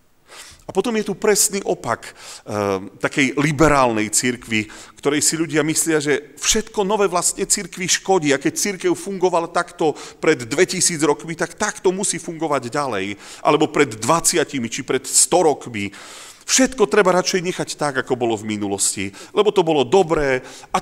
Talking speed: 155 wpm